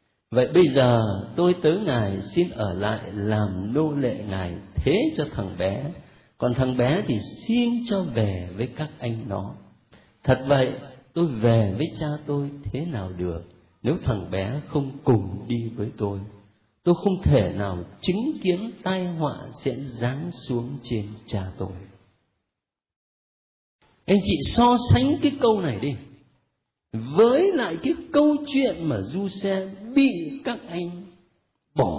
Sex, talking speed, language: male, 150 wpm, Vietnamese